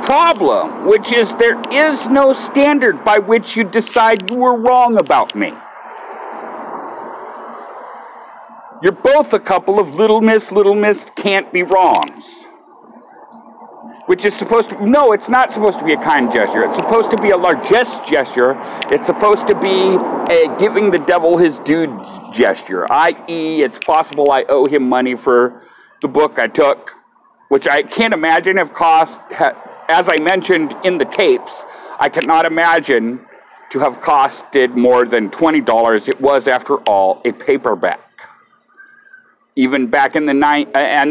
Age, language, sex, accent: 50-69, English, male, American